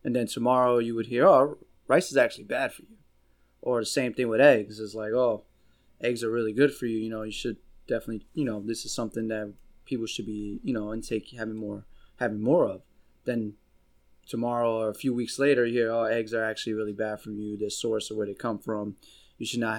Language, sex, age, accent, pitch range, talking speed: English, male, 20-39, American, 105-120 Hz, 235 wpm